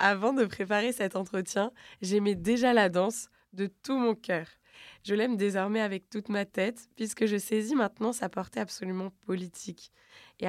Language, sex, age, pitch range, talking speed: French, female, 20-39, 190-225 Hz, 165 wpm